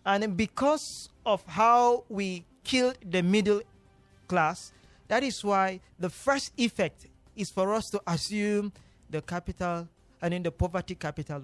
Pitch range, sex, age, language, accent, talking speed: 185-240 Hz, male, 40-59, English, Nigerian, 140 wpm